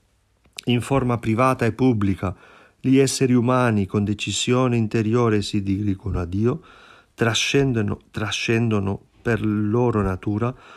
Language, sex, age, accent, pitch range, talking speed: Italian, male, 40-59, native, 100-130 Hz, 110 wpm